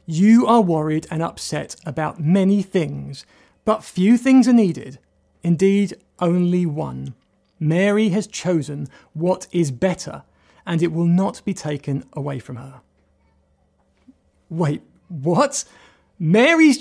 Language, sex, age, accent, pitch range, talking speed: English, male, 30-49, British, 155-220 Hz, 120 wpm